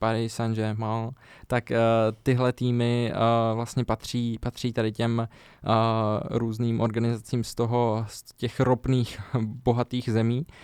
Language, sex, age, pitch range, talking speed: Czech, male, 20-39, 115-125 Hz, 125 wpm